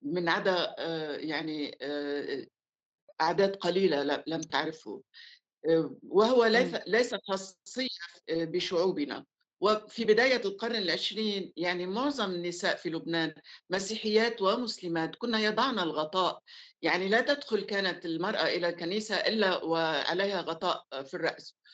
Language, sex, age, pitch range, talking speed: Arabic, female, 50-69, 170-225 Hz, 100 wpm